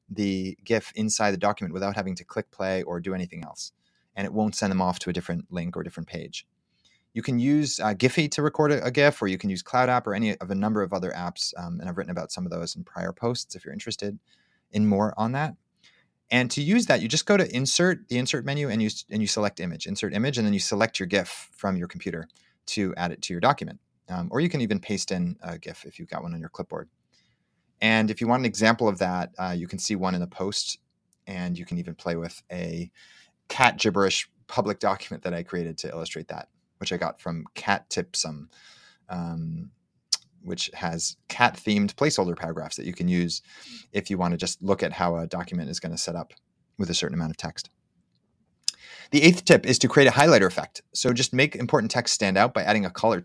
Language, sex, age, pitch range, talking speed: English, male, 30-49, 90-120 Hz, 240 wpm